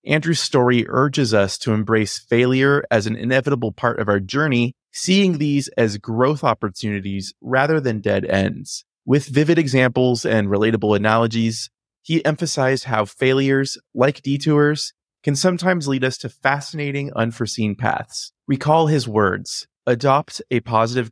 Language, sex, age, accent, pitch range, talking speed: English, male, 30-49, American, 110-140 Hz, 140 wpm